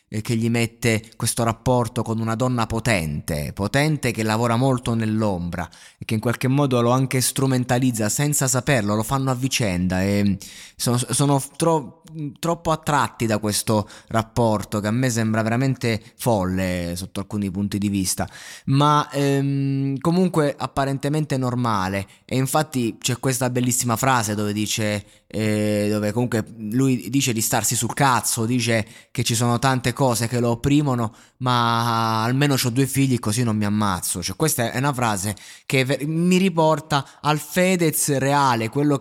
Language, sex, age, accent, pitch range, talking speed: Italian, male, 20-39, native, 110-140 Hz, 155 wpm